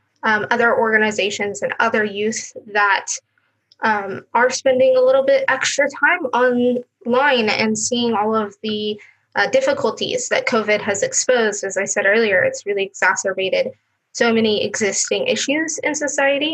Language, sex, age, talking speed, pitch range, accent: English, female, 10-29, 145 wpm, 210-260 Hz, American